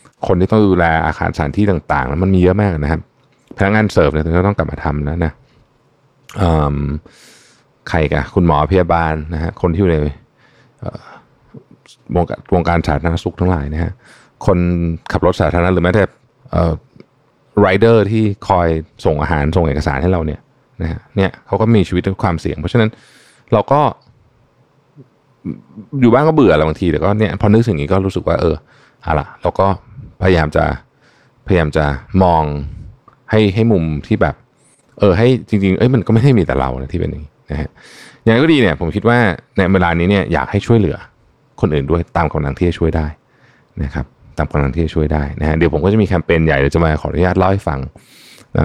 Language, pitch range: Thai, 80-110 Hz